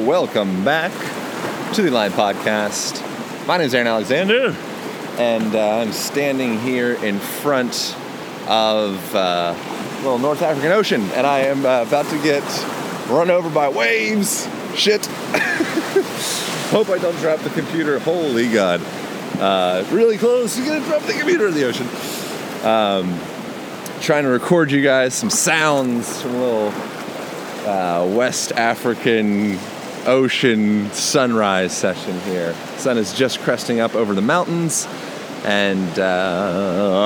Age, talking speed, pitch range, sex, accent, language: 30-49, 135 wpm, 110-145 Hz, male, American, English